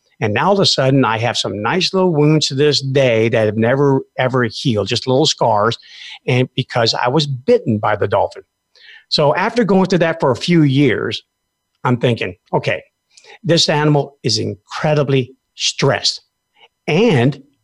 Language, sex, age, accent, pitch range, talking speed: English, male, 50-69, American, 125-170 Hz, 165 wpm